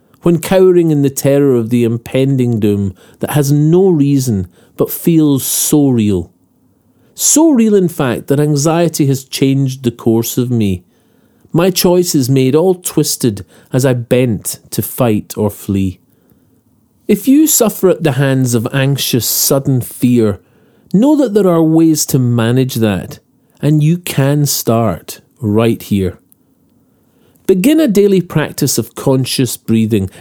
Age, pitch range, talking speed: 40-59, 120-175 Hz, 145 wpm